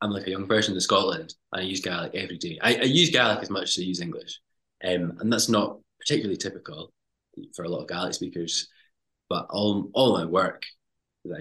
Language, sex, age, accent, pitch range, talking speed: English, male, 20-39, British, 90-115 Hz, 215 wpm